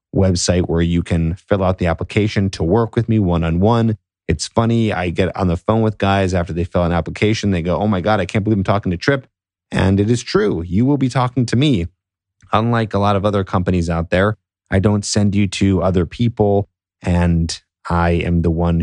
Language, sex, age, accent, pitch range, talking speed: English, male, 30-49, American, 85-105 Hz, 225 wpm